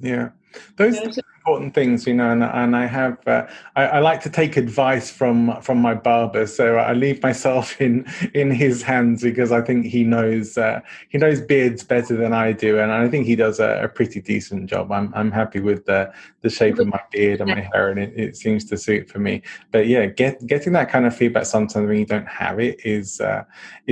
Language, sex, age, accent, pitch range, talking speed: English, male, 20-39, British, 110-130 Hz, 225 wpm